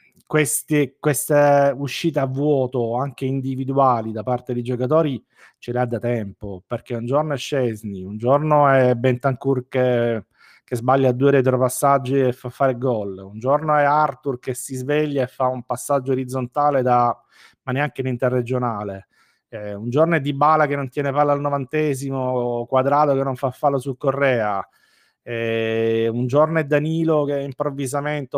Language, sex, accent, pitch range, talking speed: Italian, male, native, 120-145 Hz, 160 wpm